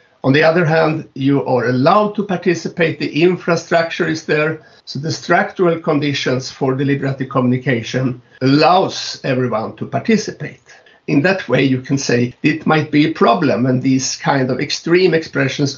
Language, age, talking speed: English, 60-79, 155 wpm